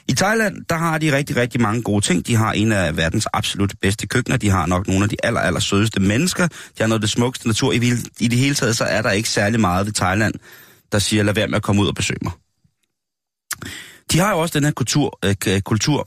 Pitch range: 95-125 Hz